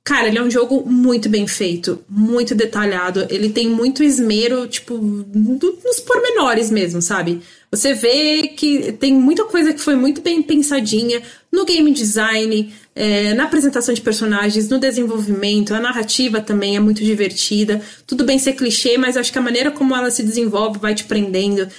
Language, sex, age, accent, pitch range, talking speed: English, female, 20-39, Brazilian, 210-265 Hz, 170 wpm